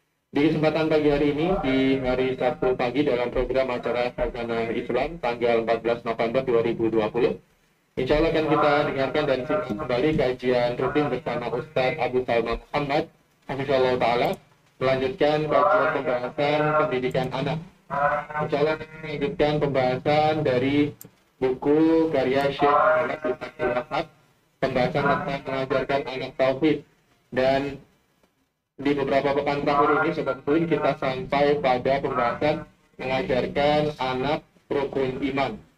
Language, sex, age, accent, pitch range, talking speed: Indonesian, male, 20-39, native, 130-150 Hz, 115 wpm